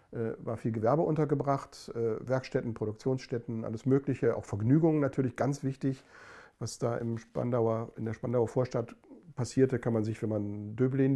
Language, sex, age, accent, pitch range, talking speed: German, male, 50-69, German, 110-130 Hz, 140 wpm